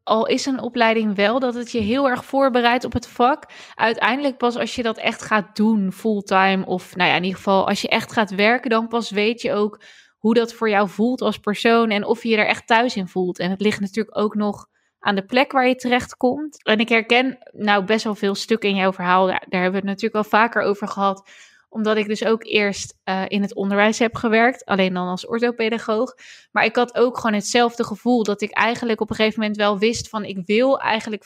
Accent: Dutch